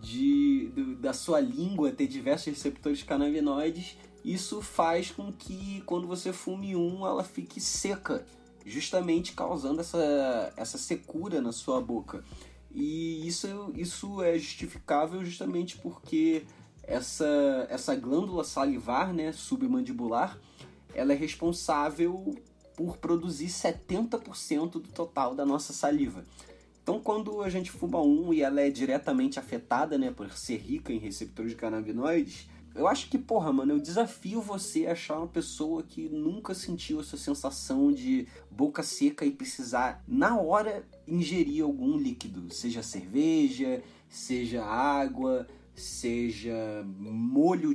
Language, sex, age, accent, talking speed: Portuguese, male, 20-39, Brazilian, 130 wpm